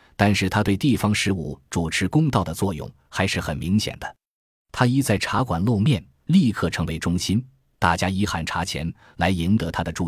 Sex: male